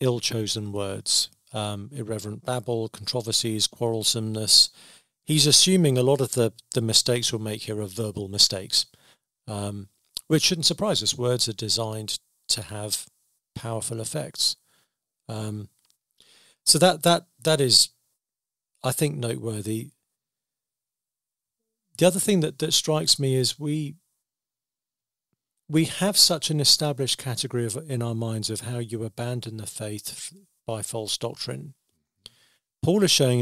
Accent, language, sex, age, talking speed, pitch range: British, English, male, 50-69, 135 wpm, 110-140 Hz